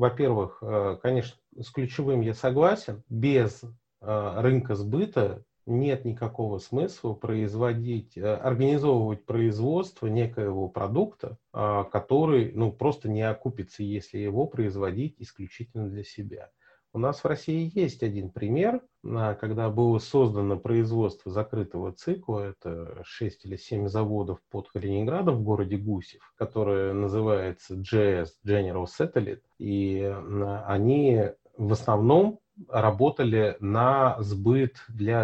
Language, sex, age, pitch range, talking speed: Russian, male, 30-49, 100-125 Hz, 110 wpm